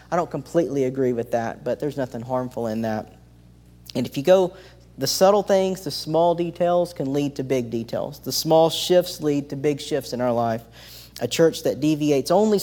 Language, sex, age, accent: English, male, 40-59, American